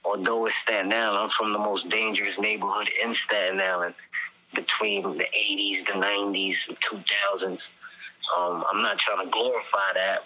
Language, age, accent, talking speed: English, 20-39, American, 160 wpm